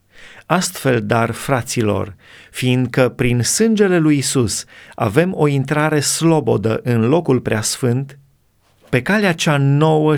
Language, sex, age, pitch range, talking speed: Romanian, male, 30-49, 120-155 Hz, 110 wpm